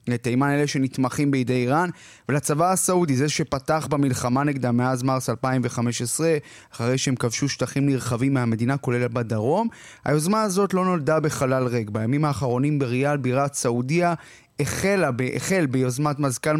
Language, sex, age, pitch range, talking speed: Hebrew, male, 20-39, 130-165 Hz, 130 wpm